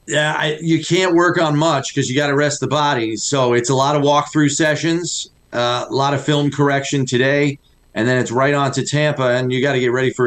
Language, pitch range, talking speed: English, 130-160 Hz, 245 wpm